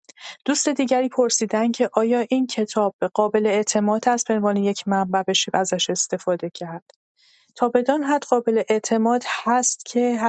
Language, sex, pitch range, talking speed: Persian, female, 195-225 Hz, 150 wpm